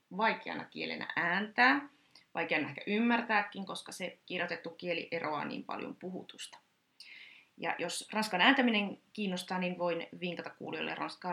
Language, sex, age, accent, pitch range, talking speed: Finnish, female, 30-49, native, 175-245 Hz, 125 wpm